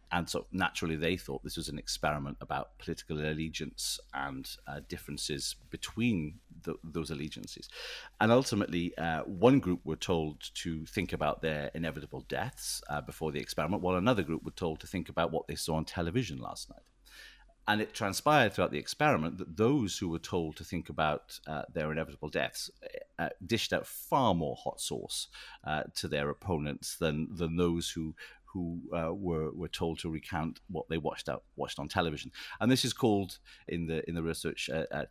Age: 40-59